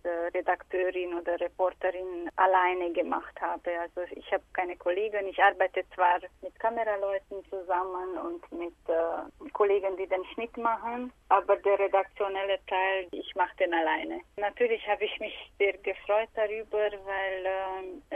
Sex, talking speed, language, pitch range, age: female, 140 wpm, German, 175-195 Hz, 30-49